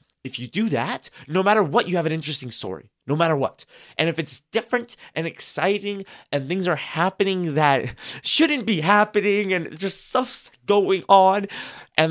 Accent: American